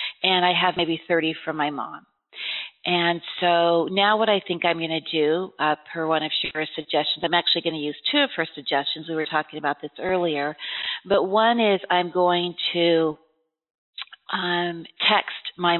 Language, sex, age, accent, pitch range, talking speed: English, female, 40-59, American, 165-190 Hz, 180 wpm